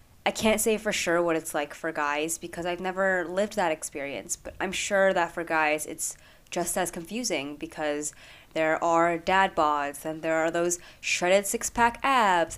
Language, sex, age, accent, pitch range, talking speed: English, female, 20-39, American, 155-200 Hz, 185 wpm